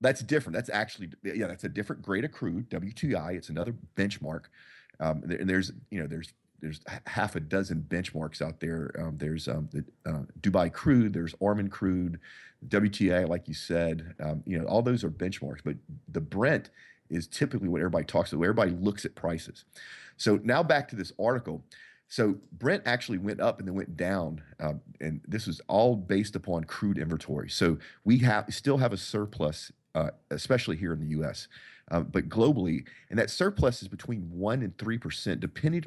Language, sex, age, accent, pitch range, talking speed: English, male, 40-59, American, 80-105 Hz, 190 wpm